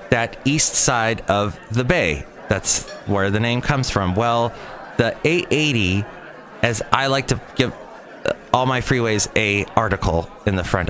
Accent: American